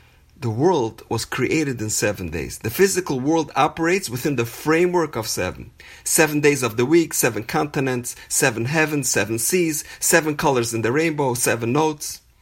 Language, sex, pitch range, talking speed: English, male, 120-165 Hz, 165 wpm